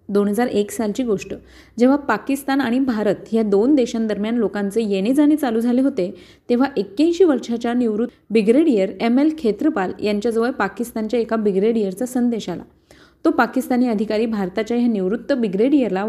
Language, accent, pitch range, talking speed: Marathi, native, 205-260 Hz, 140 wpm